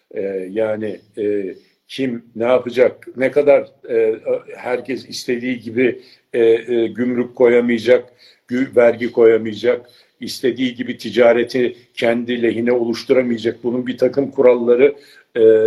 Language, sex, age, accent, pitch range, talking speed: Turkish, male, 60-79, native, 115-170 Hz, 115 wpm